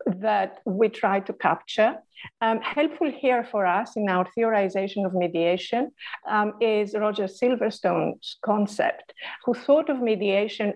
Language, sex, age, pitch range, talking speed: English, female, 50-69, 195-235 Hz, 135 wpm